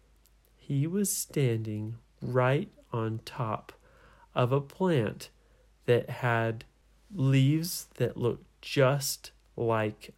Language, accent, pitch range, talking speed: English, American, 115-165 Hz, 95 wpm